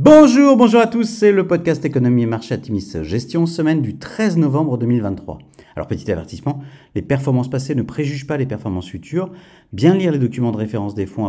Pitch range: 115-165 Hz